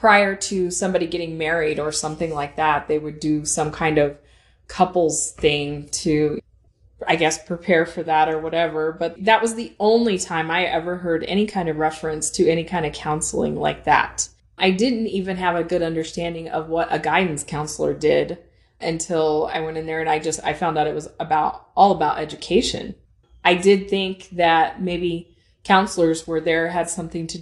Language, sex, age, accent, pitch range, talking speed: English, female, 20-39, American, 160-190 Hz, 190 wpm